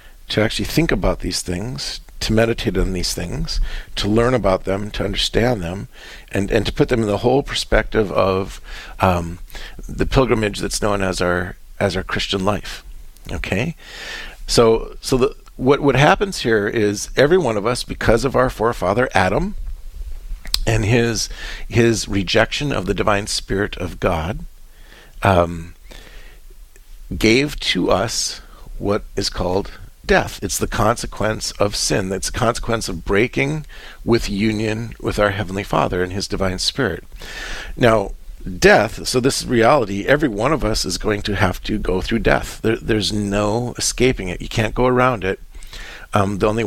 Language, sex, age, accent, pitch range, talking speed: English, male, 50-69, American, 95-115 Hz, 160 wpm